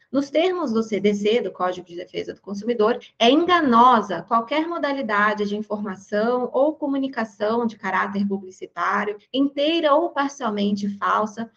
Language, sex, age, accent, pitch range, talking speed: Portuguese, female, 20-39, Brazilian, 215-285 Hz, 130 wpm